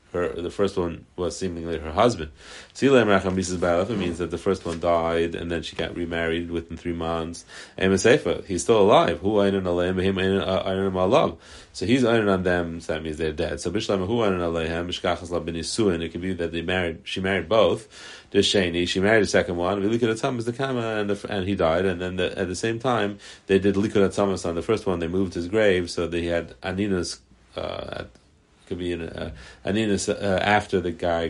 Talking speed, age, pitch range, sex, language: 210 wpm, 30-49, 85-100 Hz, male, English